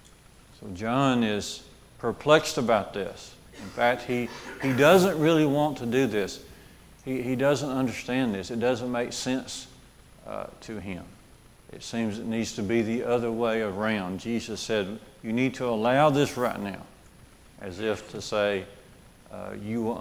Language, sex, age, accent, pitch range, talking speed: English, male, 50-69, American, 105-130 Hz, 160 wpm